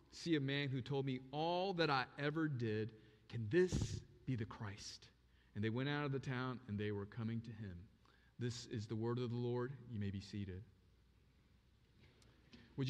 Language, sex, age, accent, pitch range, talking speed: English, male, 40-59, American, 115-145 Hz, 190 wpm